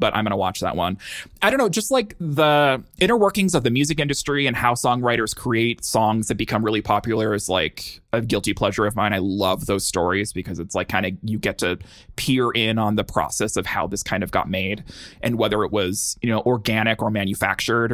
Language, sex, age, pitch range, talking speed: English, male, 20-39, 105-135 Hz, 230 wpm